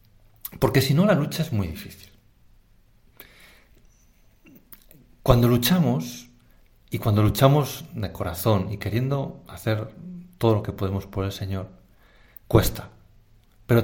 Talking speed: 115 wpm